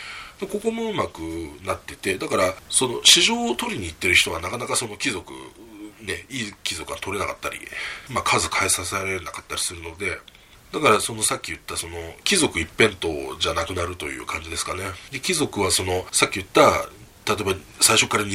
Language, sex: Japanese, male